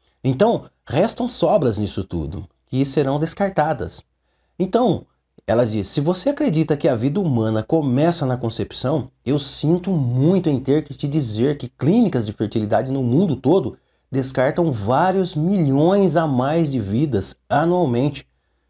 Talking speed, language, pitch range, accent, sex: 140 wpm, Portuguese, 105-165 Hz, Brazilian, male